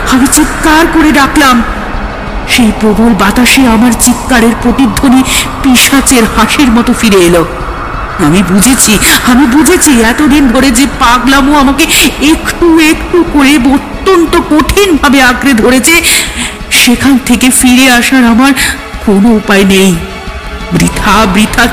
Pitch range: 230-280 Hz